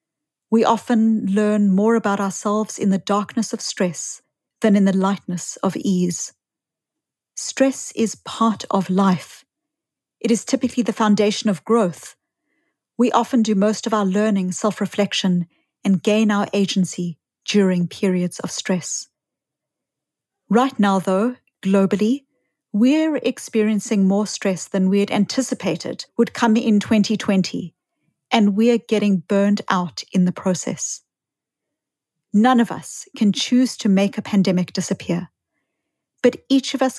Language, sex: English, female